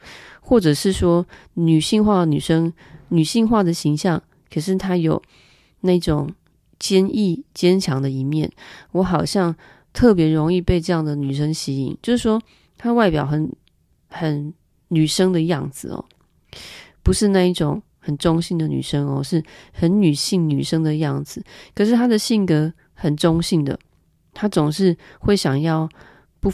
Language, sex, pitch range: Chinese, female, 150-190 Hz